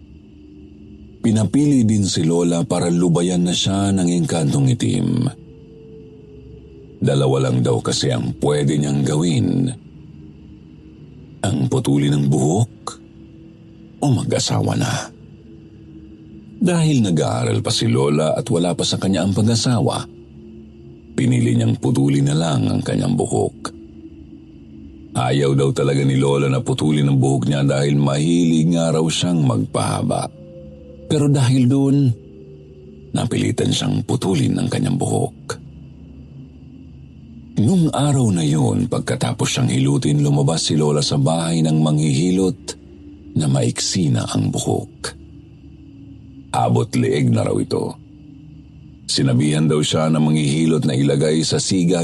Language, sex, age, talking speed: Filipino, male, 50-69, 120 wpm